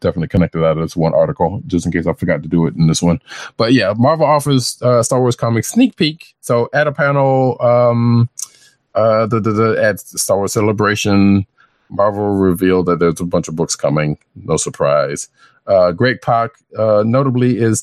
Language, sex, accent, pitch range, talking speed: English, male, American, 95-130 Hz, 190 wpm